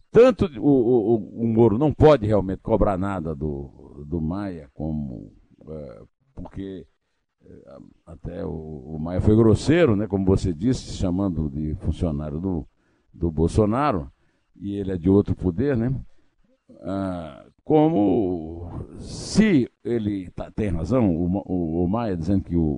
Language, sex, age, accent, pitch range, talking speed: Portuguese, male, 60-79, Brazilian, 95-155 Hz, 125 wpm